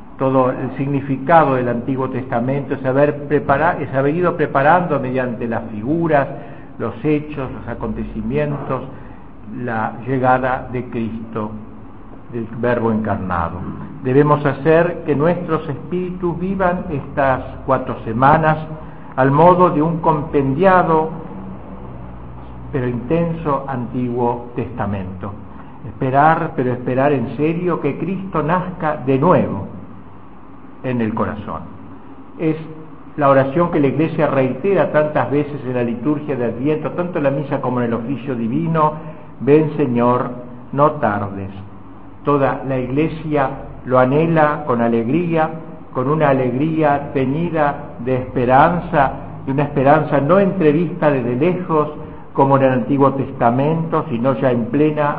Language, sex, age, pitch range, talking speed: Spanish, male, 60-79, 125-155 Hz, 120 wpm